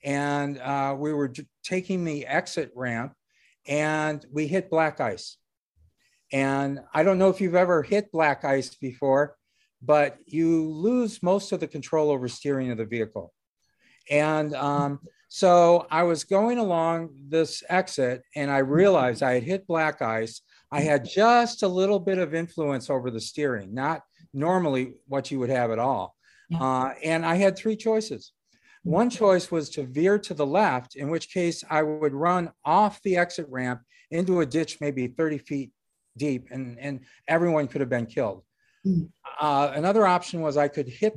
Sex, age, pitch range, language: male, 50-69, 135-175 Hz, English